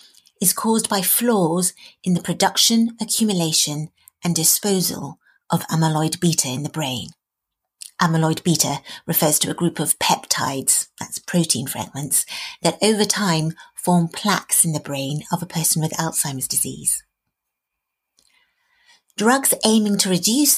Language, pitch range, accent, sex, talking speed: English, 160-230 Hz, British, female, 130 wpm